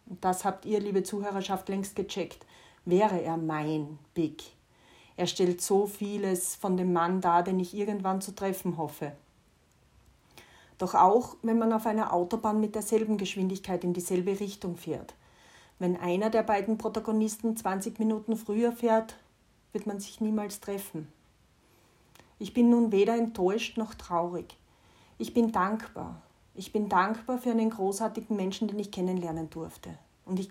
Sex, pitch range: female, 175-220 Hz